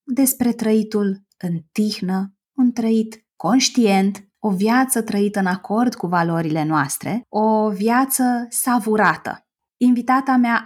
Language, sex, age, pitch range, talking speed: Romanian, female, 20-39, 185-240 Hz, 115 wpm